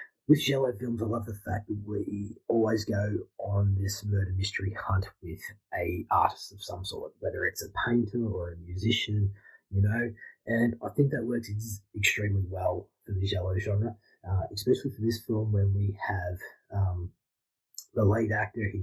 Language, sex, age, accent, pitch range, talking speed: English, male, 30-49, Australian, 95-110 Hz, 175 wpm